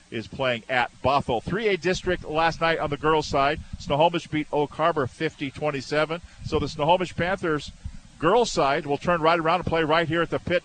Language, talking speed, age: English, 190 wpm, 50-69